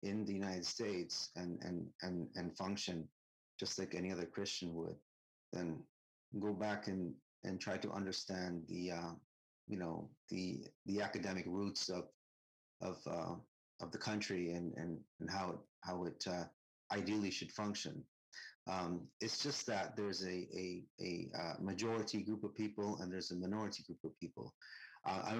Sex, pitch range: male, 85-105 Hz